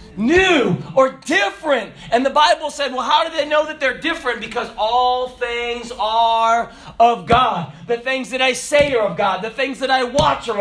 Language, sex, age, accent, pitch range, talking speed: English, male, 40-59, American, 175-275 Hz, 200 wpm